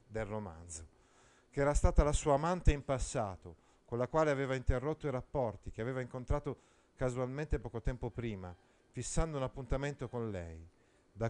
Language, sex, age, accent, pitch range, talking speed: Italian, male, 40-59, native, 110-145 Hz, 160 wpm